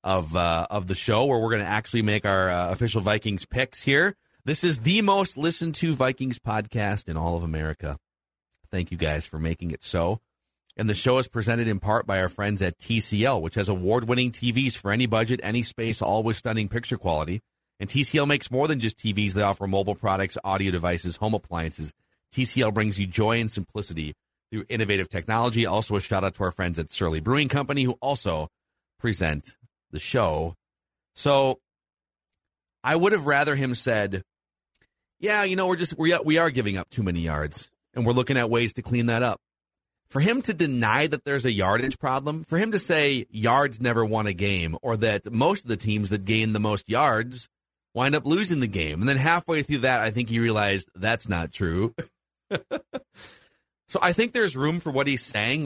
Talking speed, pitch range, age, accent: 200 wpm, 90-130 Hz, 40-59, American